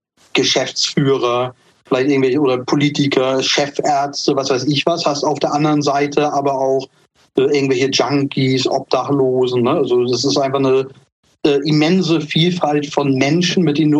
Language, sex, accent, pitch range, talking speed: German, male, German, 130-150 Hz, 145 wpm